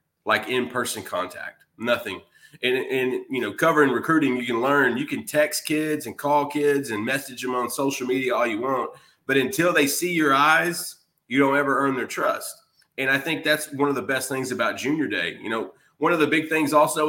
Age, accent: 30-49, American